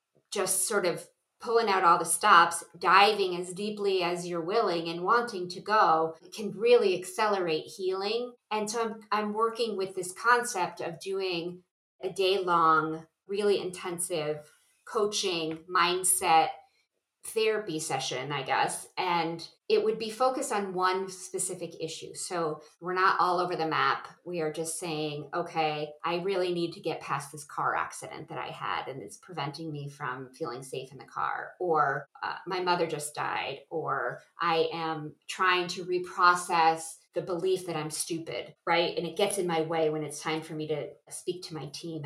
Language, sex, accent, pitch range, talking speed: English, female, American, 160-200 Hz, 170 wpm